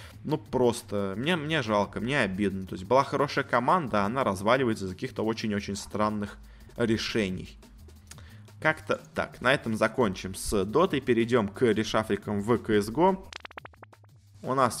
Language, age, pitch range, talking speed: Russian, 20-39, 105-135 Hz, 140 wpm